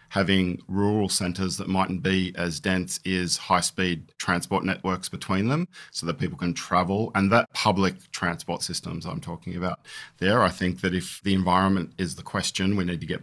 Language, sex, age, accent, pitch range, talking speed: English, male, 40-59, Australian, 90-100 Hz, 185 wpm